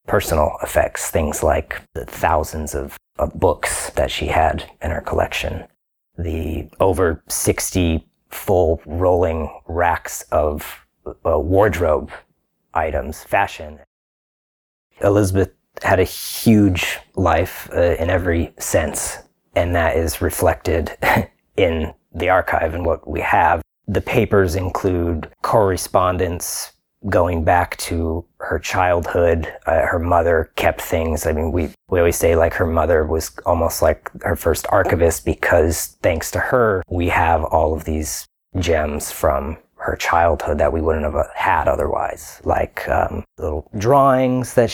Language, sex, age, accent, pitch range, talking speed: English, male, 30-49, American, 80-95 Hz, 135 wpm